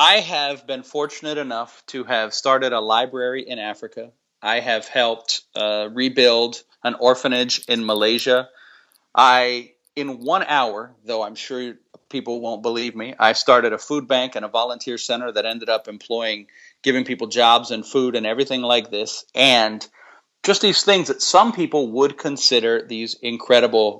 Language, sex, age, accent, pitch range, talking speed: English, male, 40-59, American, 115-145 Hz, 165 wpm